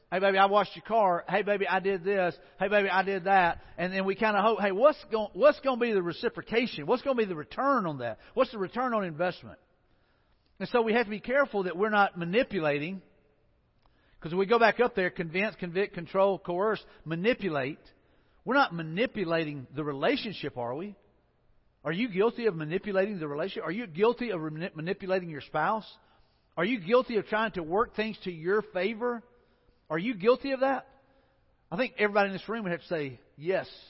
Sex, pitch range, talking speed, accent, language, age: male, 145-210 Hz, 205 wpm, American, English, 50-69